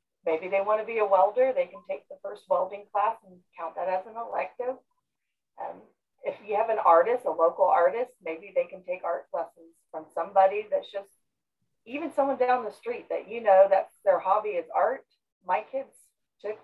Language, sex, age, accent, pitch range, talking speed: English, female, 40-59, American, 175-245 Hz, 200 wpm